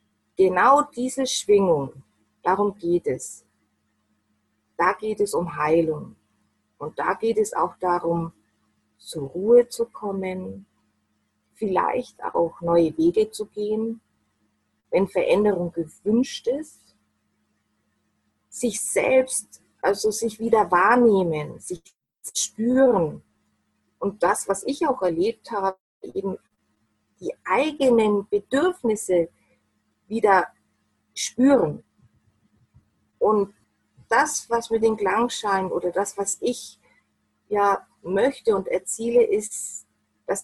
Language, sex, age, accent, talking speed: German, female, 30-49, German, 100 wpm